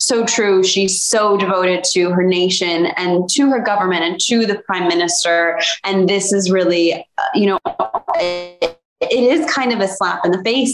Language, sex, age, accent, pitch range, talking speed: English, female, 20-39, American, 175-210 Hz, 190 wpm